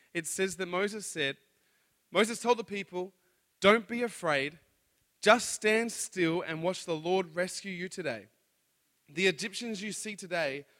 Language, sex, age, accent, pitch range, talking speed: English, male, 20-39, Australian, 160-195 Hz, 150 wpm